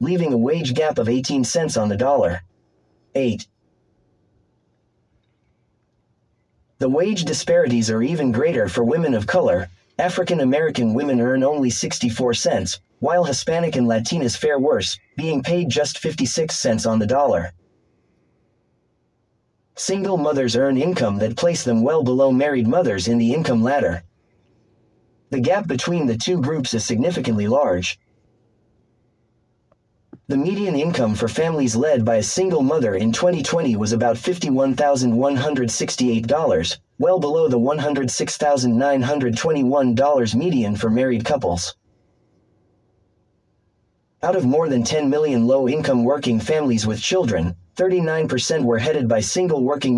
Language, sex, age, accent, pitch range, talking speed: English, male, 30-49, American, 110-145 Hz, 125 wpm